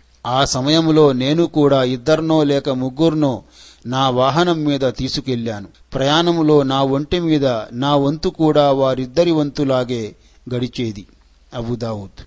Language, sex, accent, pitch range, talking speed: Telugu, male, native, 130-165 Hz, 90 wpm